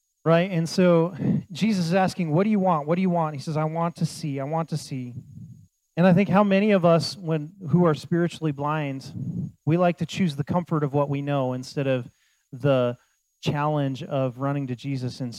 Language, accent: English, American